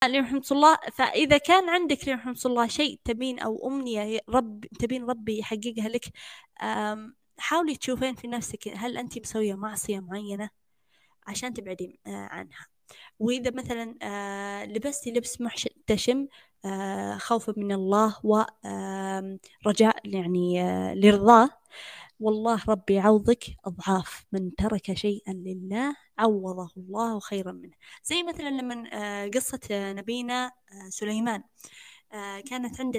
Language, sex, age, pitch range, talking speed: English, female, 20-39, 200-245 Hz, 105 wpm